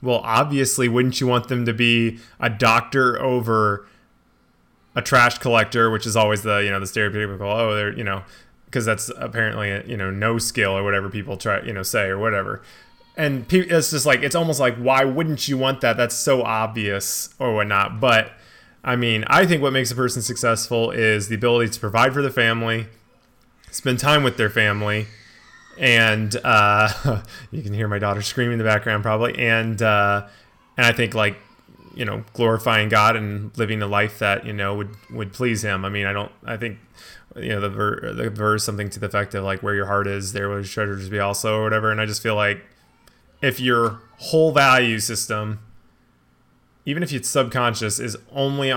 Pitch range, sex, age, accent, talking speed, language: 105-125 Hz, male, 20-39, American, 200 wpm, English